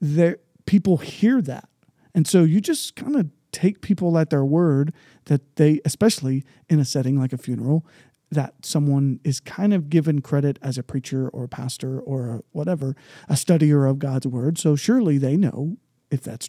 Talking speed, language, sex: 180 wpm, English, male